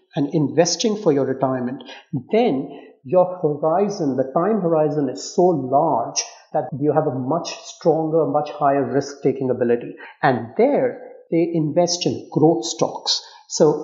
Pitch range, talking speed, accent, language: 140-180 Hz, 145 wpm, Indian, English